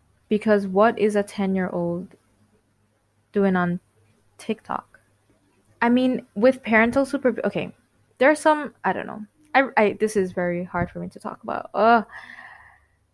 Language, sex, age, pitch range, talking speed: English, female, 20-39, 170-225 Hz, 145 wpm